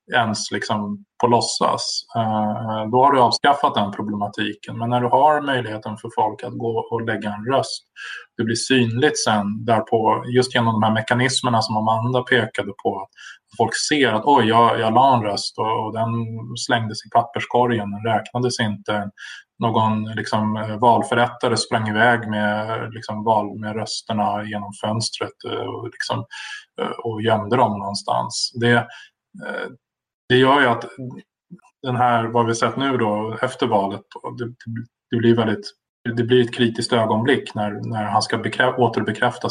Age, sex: 20-39, male